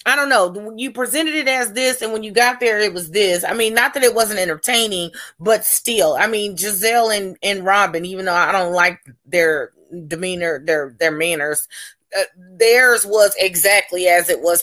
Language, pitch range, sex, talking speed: English, 170-210 Hz, female, 195 wpm